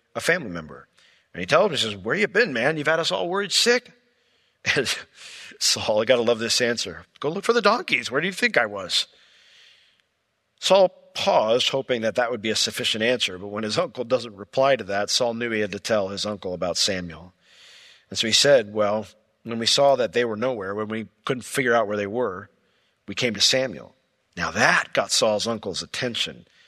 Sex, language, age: male, English, 50-69